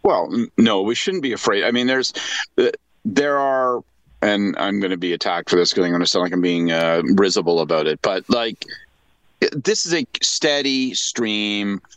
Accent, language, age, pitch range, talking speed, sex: American, English, 40-59, 105-130 Hz, 190 wpm, male